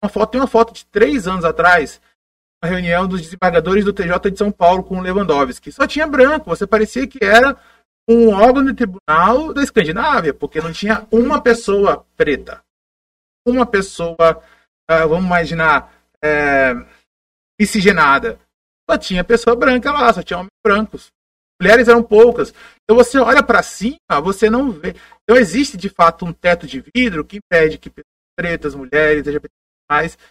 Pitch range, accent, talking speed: 180-230 Hz, Brazilian, 160 wpm